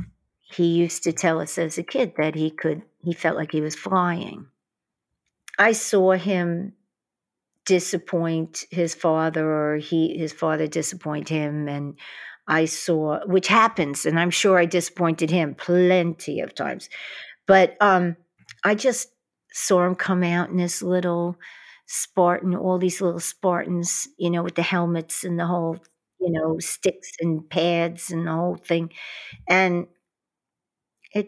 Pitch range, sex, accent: 160-185 Hz, female, American